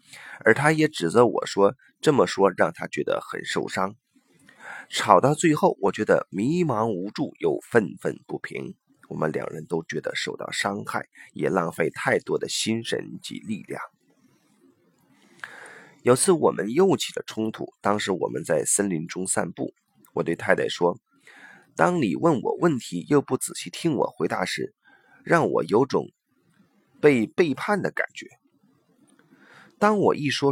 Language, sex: Chinese, male